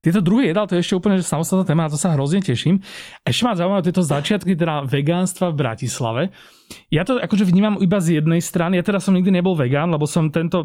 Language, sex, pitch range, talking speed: Slovak, male, 145-175 Hz, 225 wpm